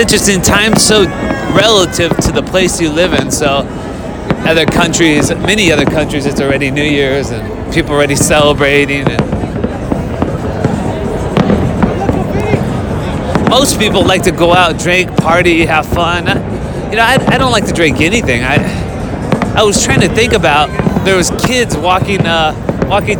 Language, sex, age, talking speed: English, male, 30-49, 145 wpm